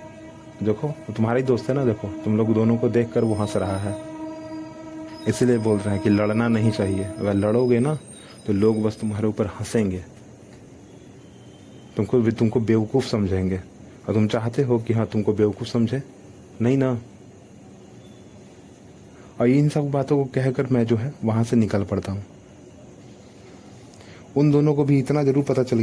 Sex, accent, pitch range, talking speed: male, native, 105-130 Hz, 165 wpm